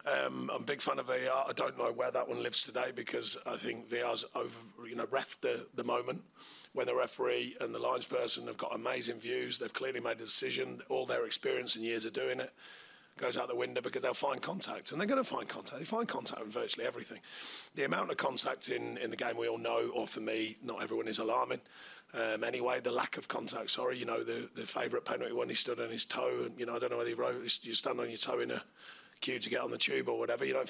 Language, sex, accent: English, male, British